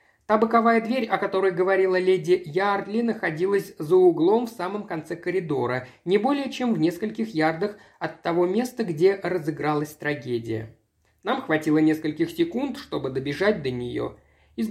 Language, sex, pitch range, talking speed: Russian, male, 145-205 Hz, 145 wpm